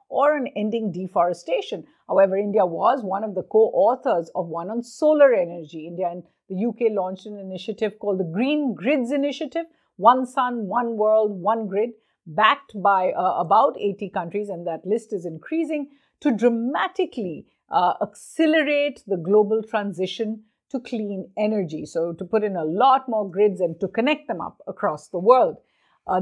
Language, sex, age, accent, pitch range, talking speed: English, female, 50-69, Indian, 185-250 Hz, 165 wpm